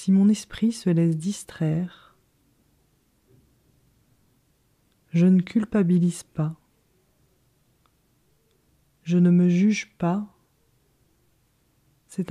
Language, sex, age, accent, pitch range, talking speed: French, female, 30-49, French, 160-195 Hz, 80 wpm